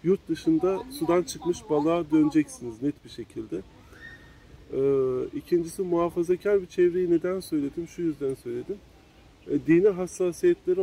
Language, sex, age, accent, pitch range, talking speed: Turkish, male, 40-59, native, 155-230 Hz, 105 wpm